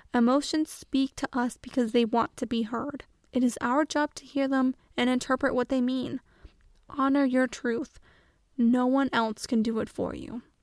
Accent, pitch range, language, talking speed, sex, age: American, 245-280 Hz, English, 185 wpm, female, 10-29